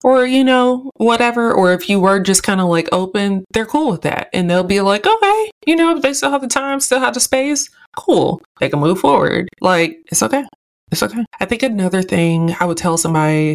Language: English